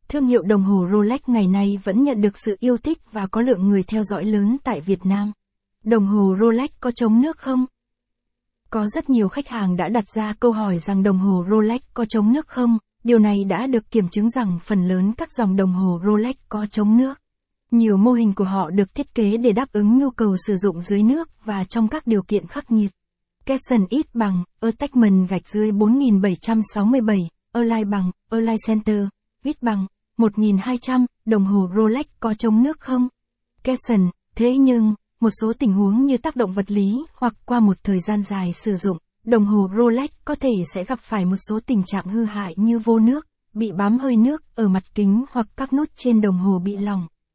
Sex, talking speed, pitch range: female, 205 wpm, 200-245 Hz